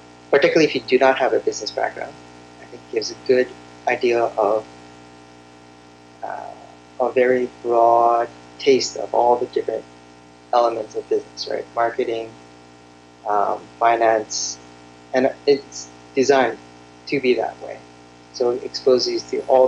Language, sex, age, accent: Korean, male, 30-49, American